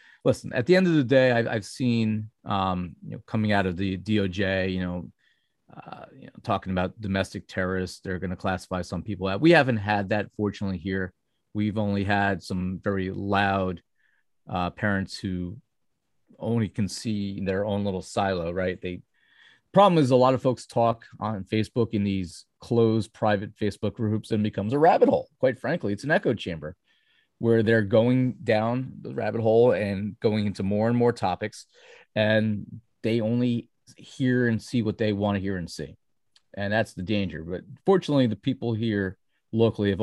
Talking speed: 185 wpm